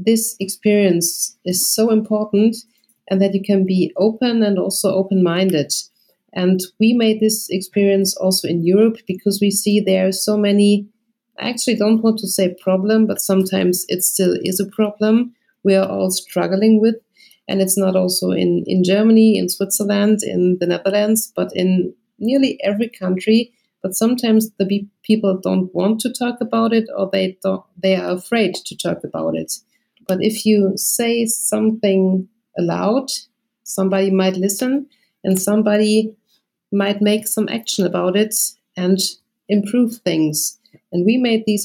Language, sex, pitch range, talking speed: English, female, 185-220 Hz, 155 wpm